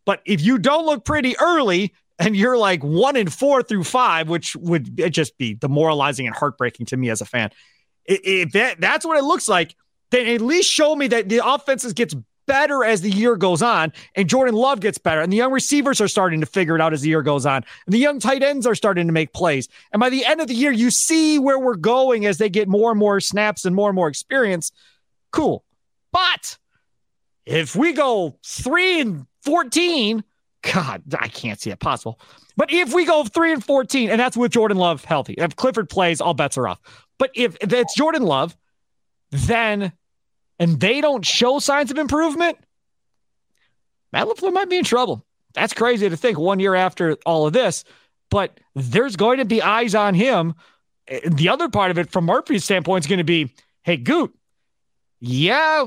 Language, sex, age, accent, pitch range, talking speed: English, male, 30-49, American, 170-270 Hz, 205 wpm